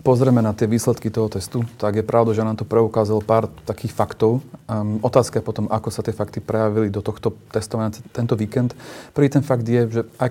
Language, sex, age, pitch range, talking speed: Slovak, male, 30-49, 105-120 Hz, 205 wpm